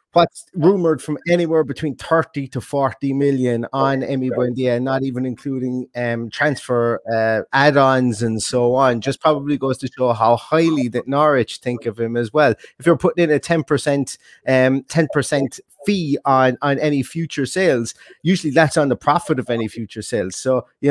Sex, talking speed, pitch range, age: male, 180 wpm, 125-155 Hz, 30-49